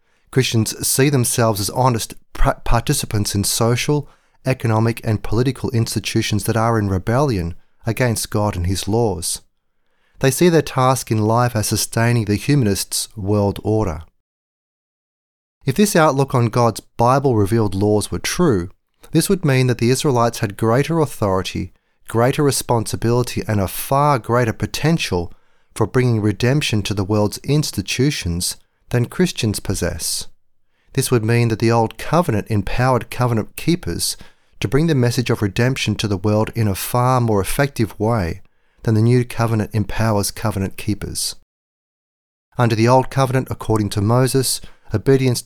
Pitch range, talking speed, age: 105-130 Hz, 145 wpm, 30-49